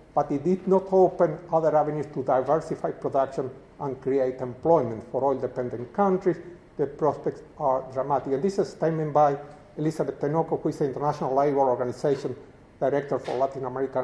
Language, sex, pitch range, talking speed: English, male, 140-180 Hz, 165 wpm